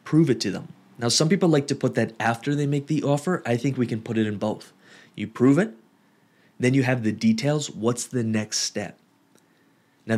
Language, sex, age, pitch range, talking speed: English, male, 30-49, 115-150 Hz, 220 wpm